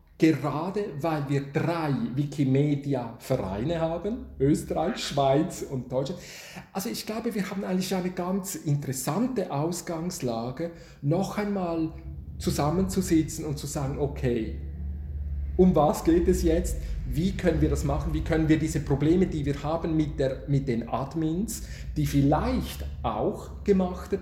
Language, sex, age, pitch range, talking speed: German, male, 40-59, 140-185 Hz, 135 wpm